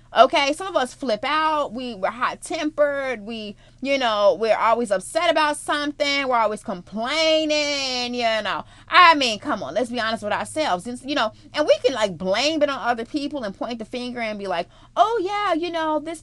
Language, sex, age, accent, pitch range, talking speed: English, female, 30-49, American, 225-315 Hz, 195 wpm